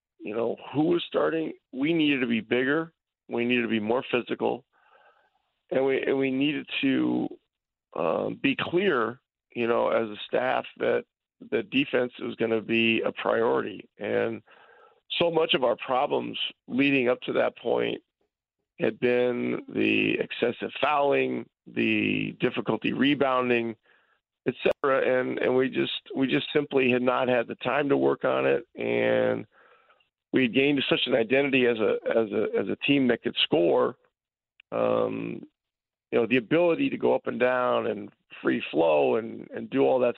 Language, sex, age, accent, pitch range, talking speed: English, male, 40-59, American, 120-160 Hz, 165 wpm